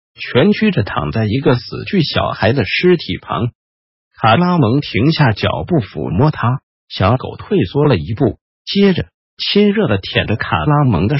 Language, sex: Chinese, male